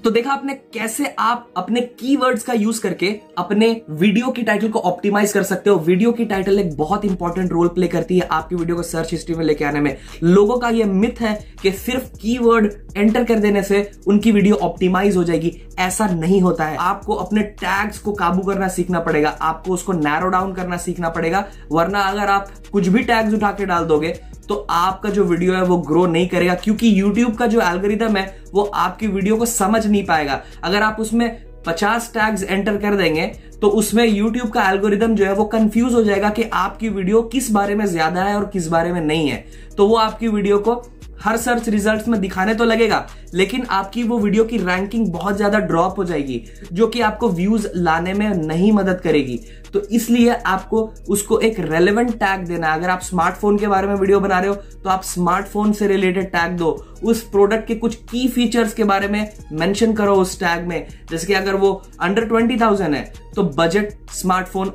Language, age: Hindi, 20-39